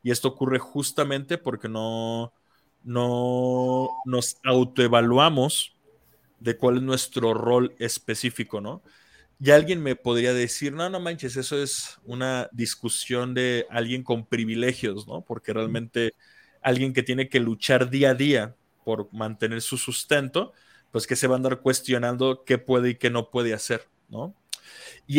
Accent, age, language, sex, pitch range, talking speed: Mexican, 20-39, Spanish, male, 120-135 Hz, 150 wpm